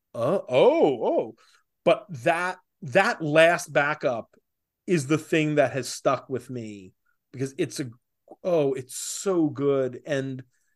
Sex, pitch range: male, 140-185 Hz